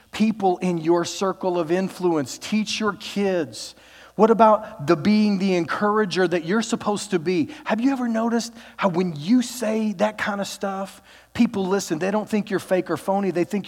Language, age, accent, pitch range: English, 40-59, American, 150-205 Hz